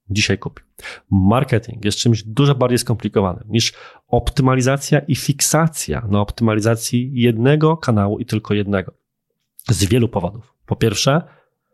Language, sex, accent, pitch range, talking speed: Polish, male, native, 100-130 Hz, 125 wpm